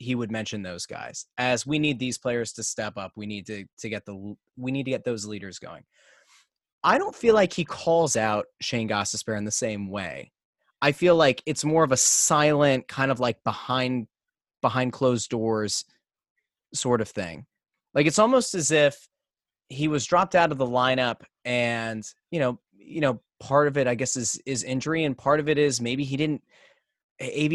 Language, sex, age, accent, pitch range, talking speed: English, male, 20-39, American, 115-150 Hz, 200 wpm